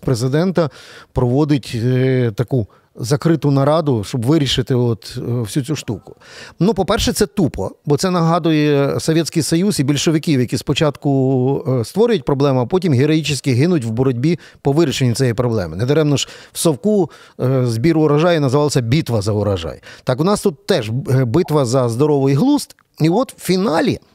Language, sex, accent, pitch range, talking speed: Ukrainian, male, native, 130-170 Hz, 150 wpm